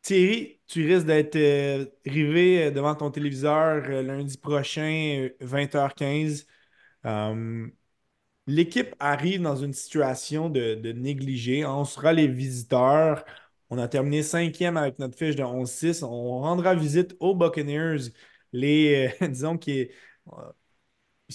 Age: 20-39